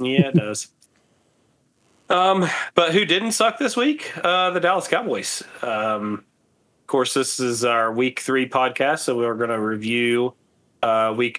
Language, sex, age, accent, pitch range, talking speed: English, male, 30-49, American, 115-130 Hz, 160 wpm